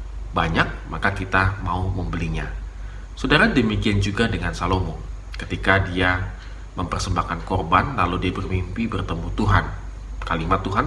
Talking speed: 115 wpm